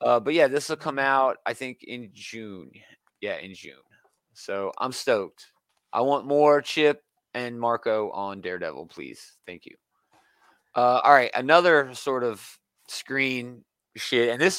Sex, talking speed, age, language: male, 155 wpm, 30-49, English